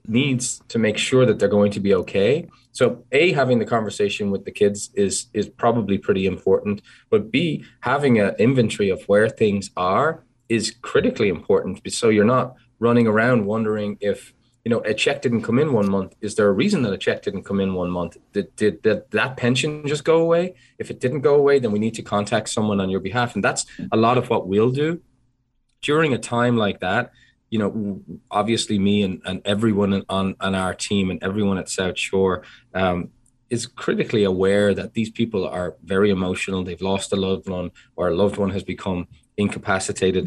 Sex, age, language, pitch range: male, 20-39, English, 95-125 Hz